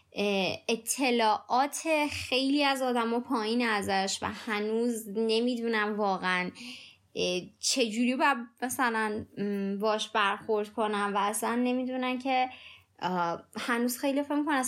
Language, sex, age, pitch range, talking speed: Persian, female, 20-39, 205-270 Hz, 100 wpm